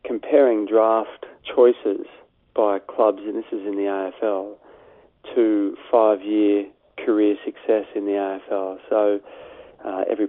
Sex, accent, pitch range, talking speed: male, Australian, 100-115 Hz, 120 wpm